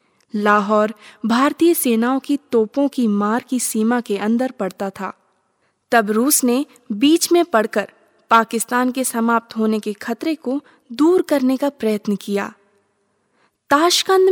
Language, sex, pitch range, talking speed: Hindi, female, 215-290 Hz, 135 wpm